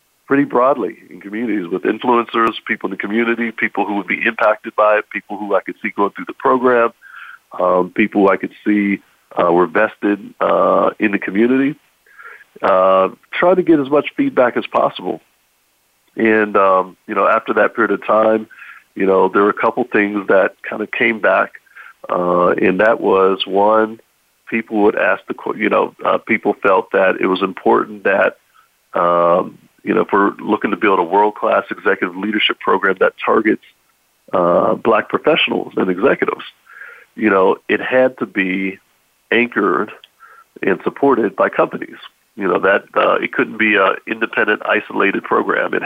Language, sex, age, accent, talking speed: English, male, 50-69, American, 175 wpm